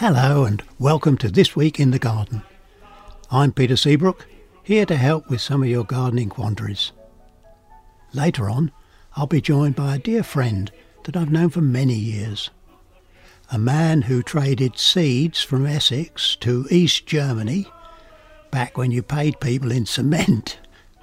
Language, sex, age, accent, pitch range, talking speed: English, male, 60-79, British, 110-160 Hz, 150 wpm